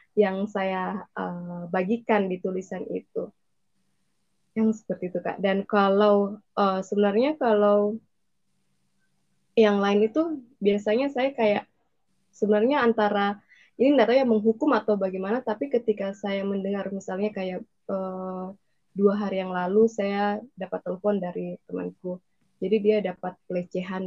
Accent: Indonesian